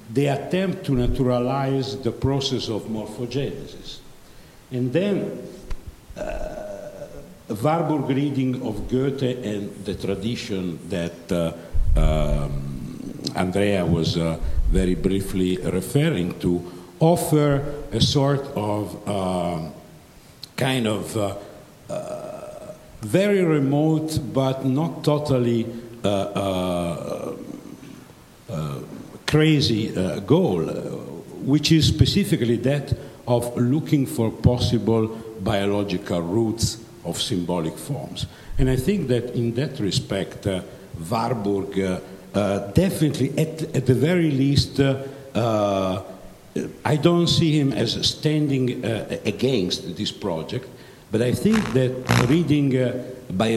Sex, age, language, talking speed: male, 60-79, English, 110 wpm